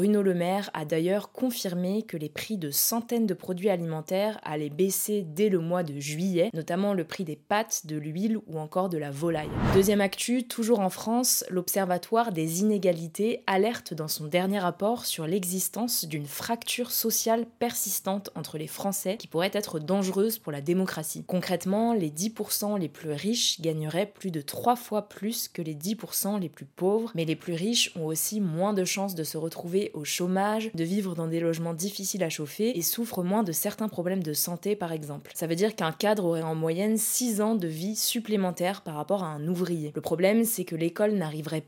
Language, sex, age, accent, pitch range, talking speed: French, female, 20-39, French, 165-210 Hz, 195 wpm